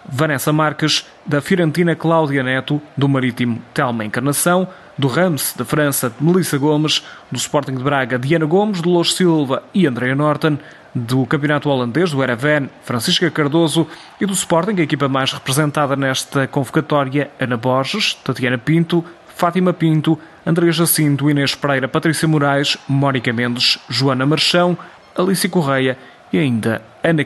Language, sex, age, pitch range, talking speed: Portuguese, male, 20-39, 135-170 Hz, 145 wpm